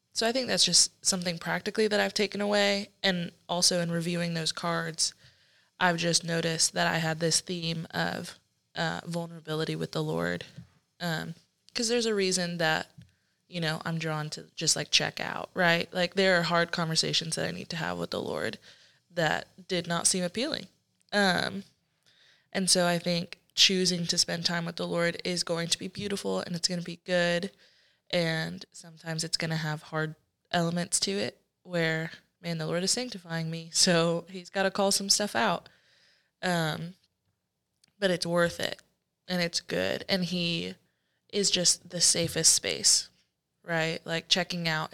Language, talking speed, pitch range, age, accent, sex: English, 175 wpm, 165-185 Hz, 20-39, American, female